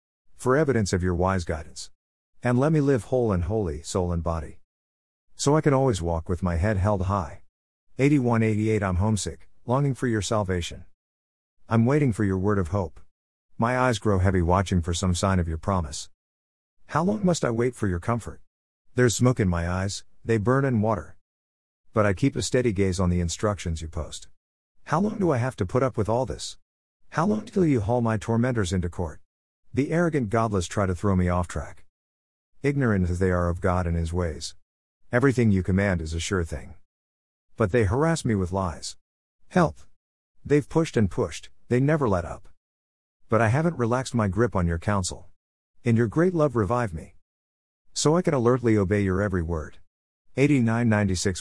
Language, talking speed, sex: English, 190 wpm, male